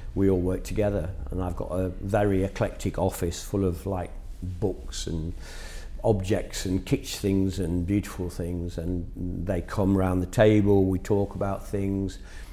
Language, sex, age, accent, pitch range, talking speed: English, male, 50-69, British, 90-100 Hz, 160 wpm